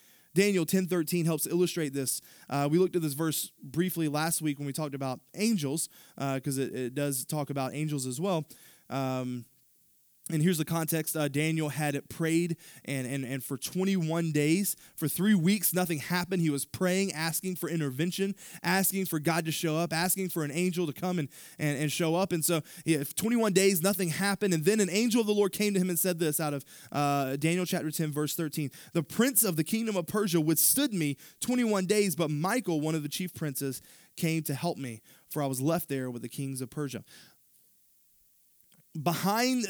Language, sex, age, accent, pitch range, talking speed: English, male, 20-39, American, 140-180 Hz, 205 wpm